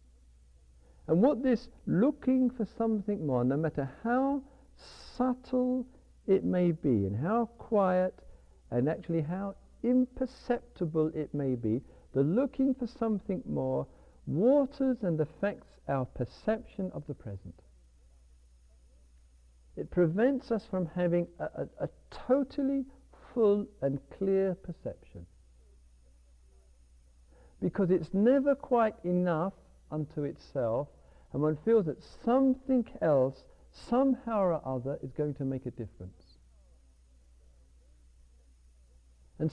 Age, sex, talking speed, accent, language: 60-79, male, 110 wpm, British, English